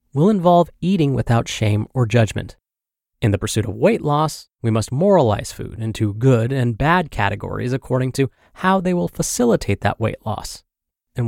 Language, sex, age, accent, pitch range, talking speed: English, male, 30-49, American, 110-150 Hz, 170 wpm